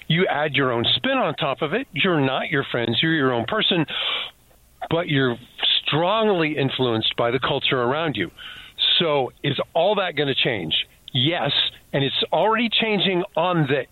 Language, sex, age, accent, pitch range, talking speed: English, male, 50-69, American, 125-165 Hz, 175 wpm